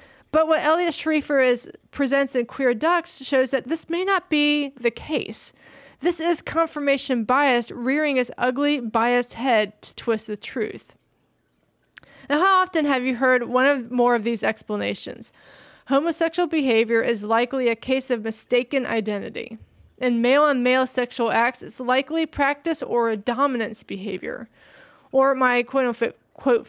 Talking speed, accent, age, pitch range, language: 150 wpm, American, 20-39, 230-275 Hz, English